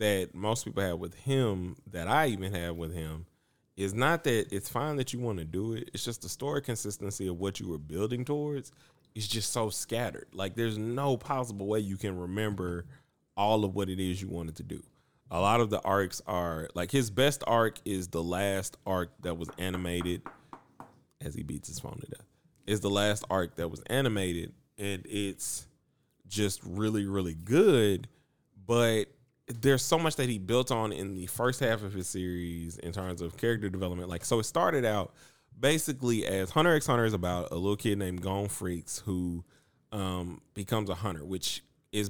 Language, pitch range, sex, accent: English, 90-115 Hz, male, American